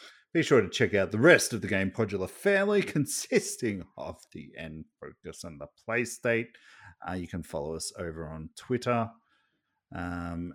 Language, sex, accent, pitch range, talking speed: English, male, Australian, 90-135 Hz, 170 wpm